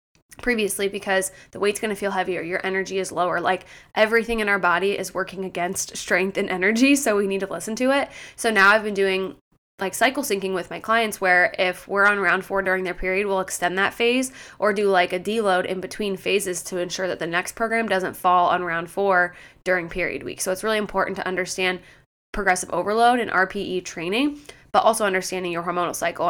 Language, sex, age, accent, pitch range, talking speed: English, female, 20-39, American, 185-205 Hz, 210 wpm